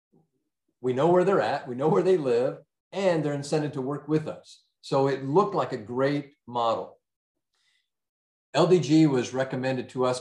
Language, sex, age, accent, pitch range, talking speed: English, male, 50-69, American, 115-160 Hz, 170 wpm